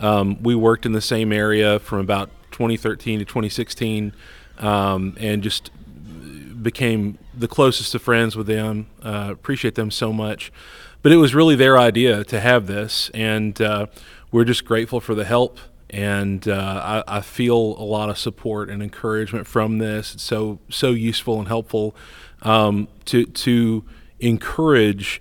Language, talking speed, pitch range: English, 160 wpm, 105-120 Hz